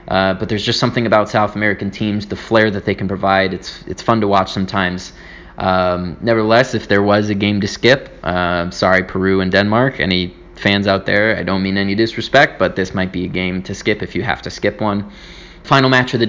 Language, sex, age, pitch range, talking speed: English, male, 20-39, 95-115 Hz, 230 wpm